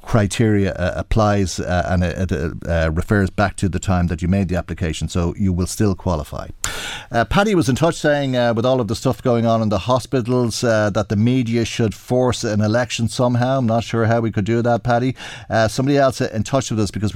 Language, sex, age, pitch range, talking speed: English, male, 50-69, 95-120 Hz, 230 wpm